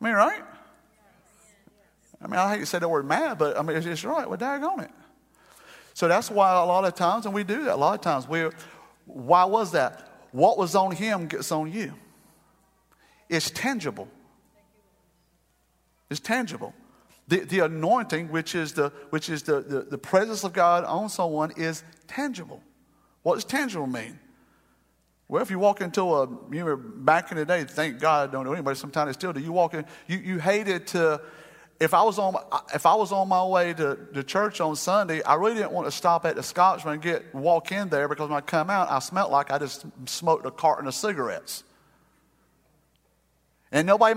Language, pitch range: English, 155-205 Hz